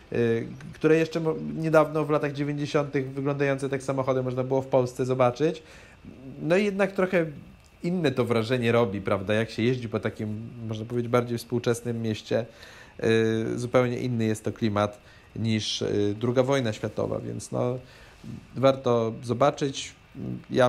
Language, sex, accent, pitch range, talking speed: Polish, male, native, 115-135 Hz, 135 wpm